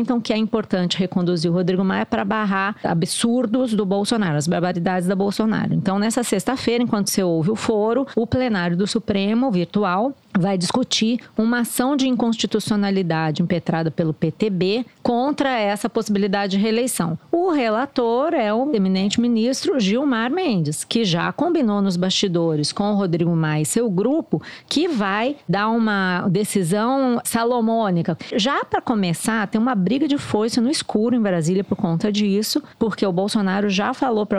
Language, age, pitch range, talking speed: Portuguese, 40-59, 185-240 Hz, 160 wpm